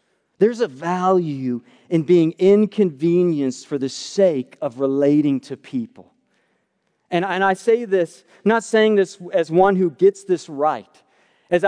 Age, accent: 40-59, American